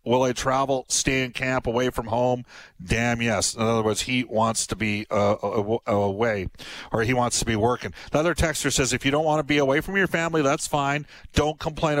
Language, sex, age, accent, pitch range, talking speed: English, male, 50-69, American, 120-145 Hz, 220 wpm